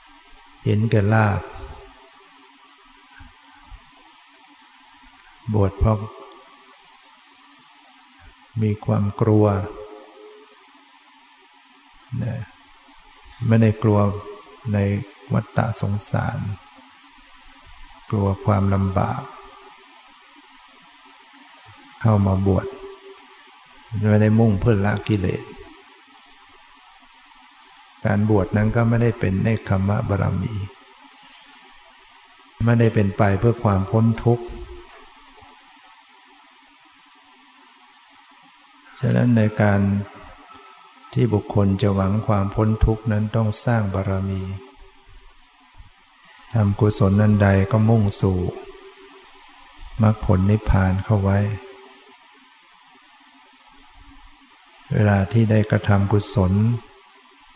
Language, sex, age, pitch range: English, male, 60-79, 100-115 Hz